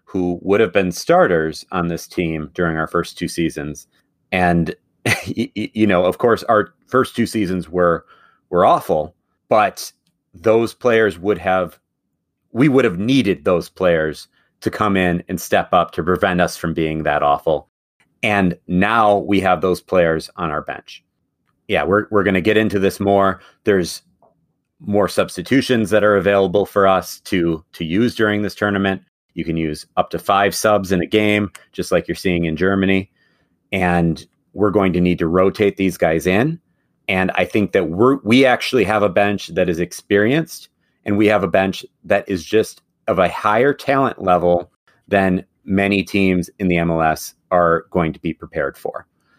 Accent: American